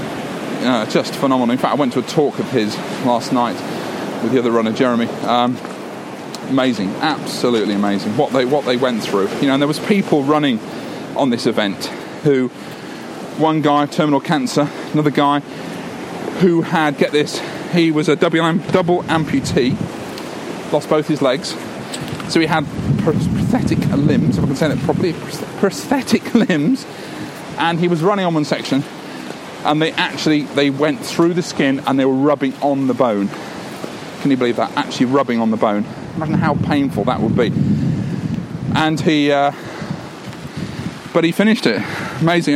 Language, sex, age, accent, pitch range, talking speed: English, male, 40-59, British, 140-170 Hz, 165 wpm